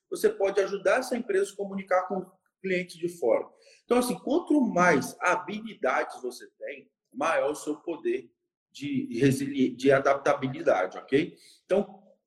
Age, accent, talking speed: 20-39, Brazilian, 135 wpm